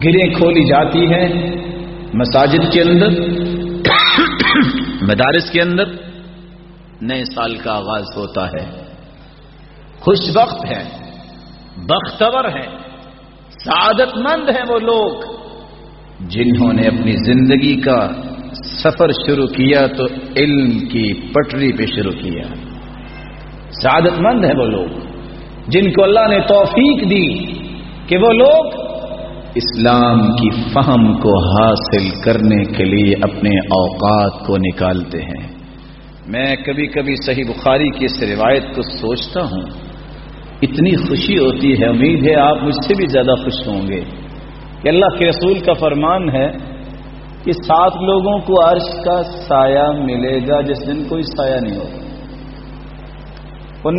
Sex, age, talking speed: male, 50-69, 130 wpm